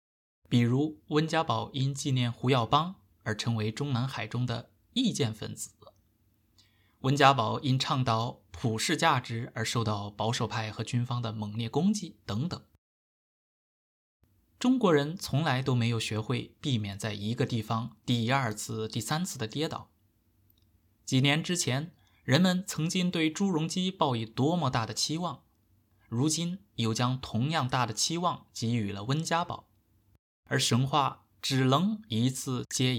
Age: 20-39